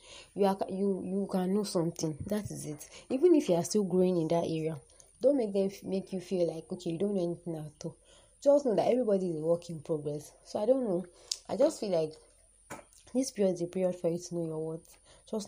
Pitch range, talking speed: 170-205 Hz, 245 wpm